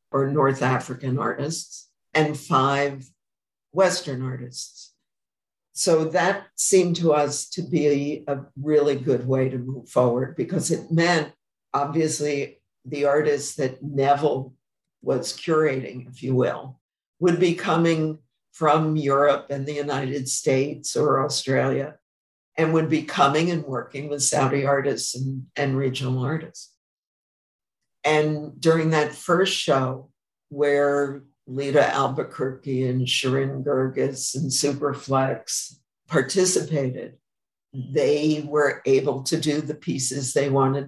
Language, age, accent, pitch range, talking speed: English, 60-79, American, 130-155 Hz, 120 wpm